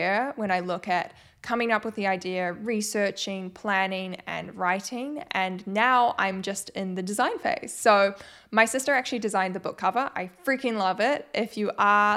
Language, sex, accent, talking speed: English, female, Australian, 180 wpm